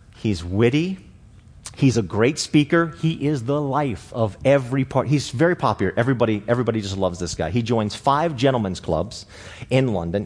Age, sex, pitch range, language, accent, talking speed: 40-59, male, 110-170 Hz, English, American, 170 wpm